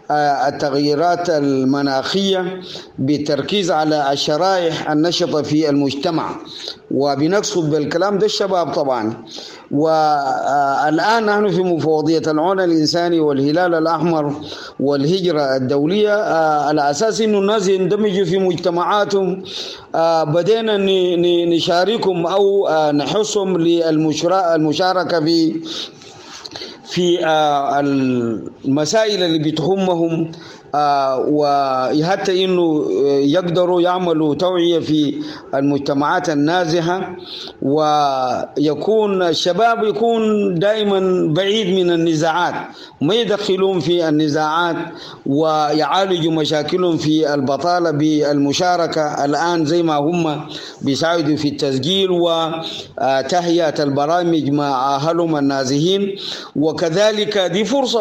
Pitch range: 150-190 Hz